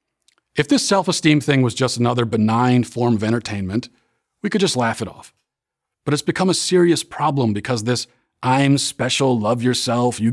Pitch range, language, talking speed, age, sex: 115-150 Hz, English, 180 wpm, 40-59, male